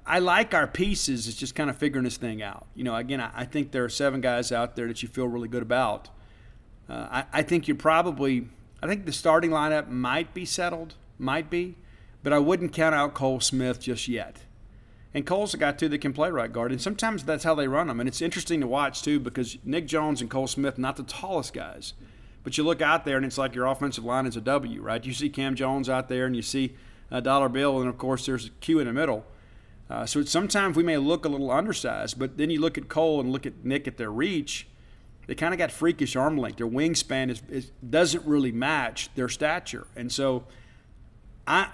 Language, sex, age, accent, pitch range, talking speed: English, male, 50-69, American, 120-150 Hz, 235 wpm